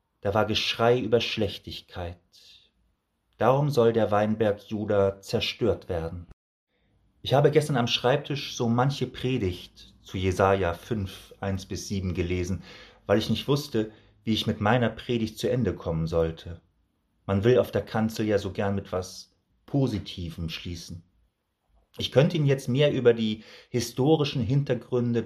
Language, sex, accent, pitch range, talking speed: German, male, German, 90-120 Hz, 140 wpm